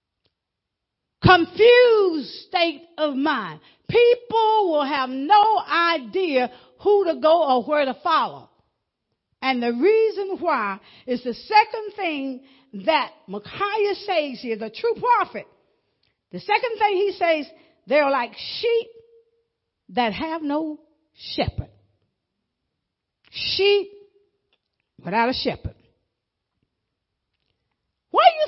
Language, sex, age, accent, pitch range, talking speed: English, female, 50-69, American, 295-420 Hz, 105 wpm